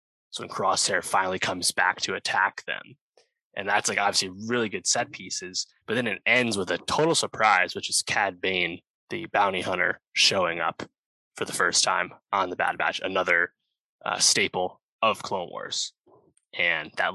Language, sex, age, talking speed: English, male, 20-39, 170 wpm